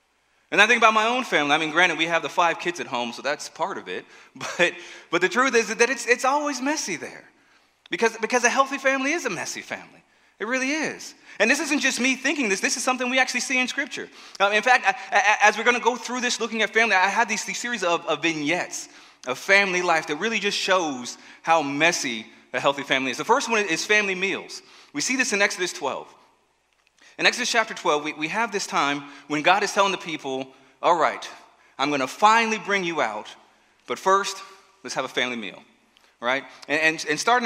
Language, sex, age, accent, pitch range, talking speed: English, male, 30-49, American, 165-240 Hz, 230 wpm